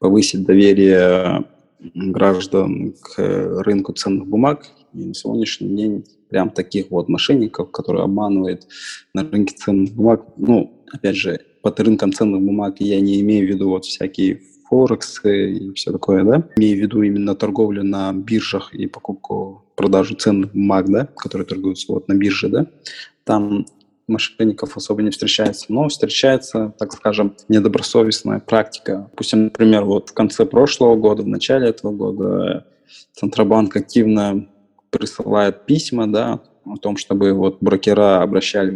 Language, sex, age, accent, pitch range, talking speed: Russian, male, 20-39, native, 95-110 Hz, 140 wpm